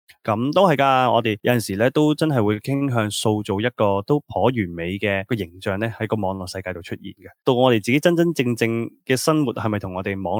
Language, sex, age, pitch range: Chinese, male, 20-39, 100-125 Hz